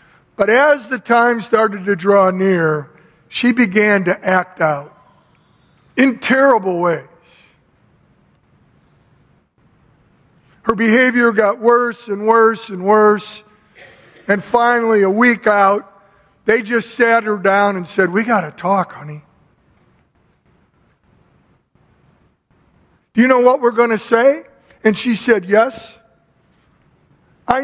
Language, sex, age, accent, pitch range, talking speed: English, male, 50-69, American, 175-230 Hz, 115 wpm